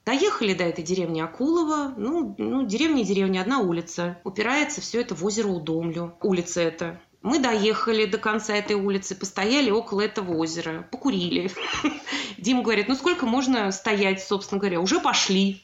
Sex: female